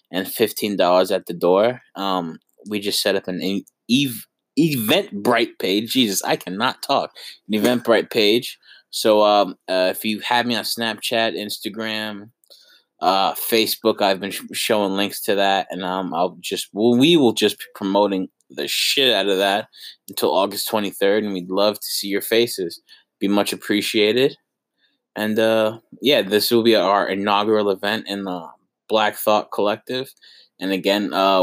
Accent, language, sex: American, English, male